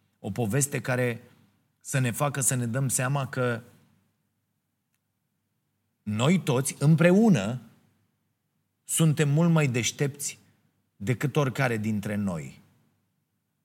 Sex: male